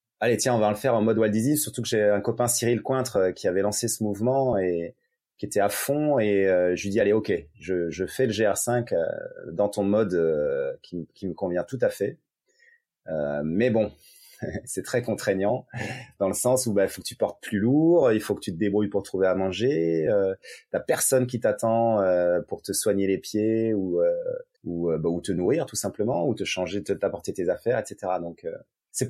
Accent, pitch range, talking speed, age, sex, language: French, 100-120 Hz, 215 wpm, 30-49, male, French